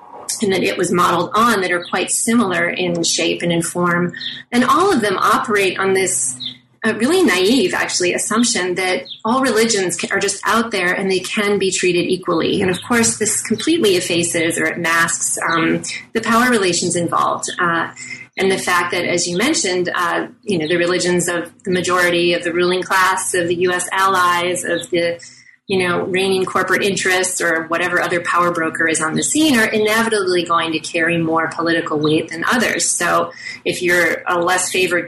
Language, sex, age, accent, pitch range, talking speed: English, female, 30-49, American, 170-220 Hz, 190 wpm